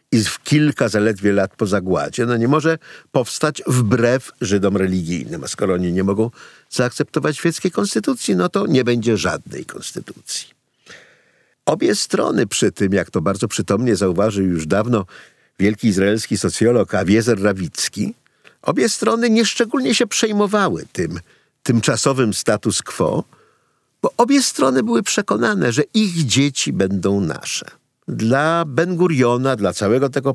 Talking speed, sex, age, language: 135 wpm, male, 50-69, Polish